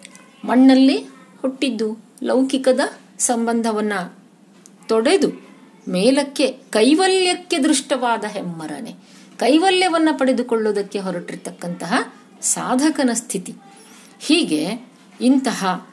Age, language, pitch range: 50-69, Kannada, 200-285 Hz